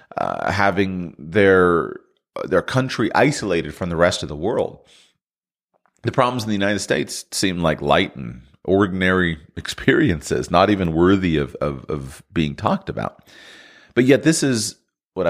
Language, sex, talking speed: English, male, 150 wpm